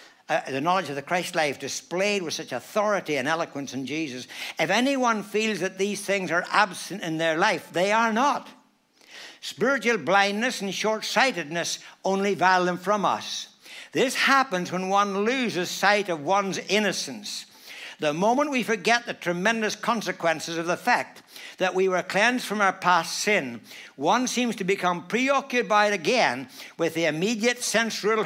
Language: English